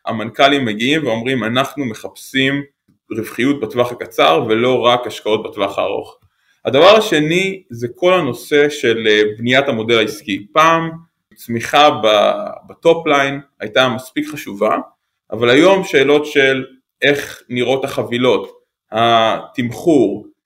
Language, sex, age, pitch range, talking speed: Hebrew, male, 20-39, 120-150 Hz, 105 wpm